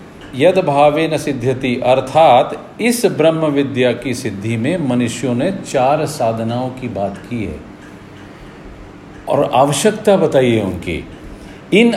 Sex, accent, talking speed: male, native, 115 wpm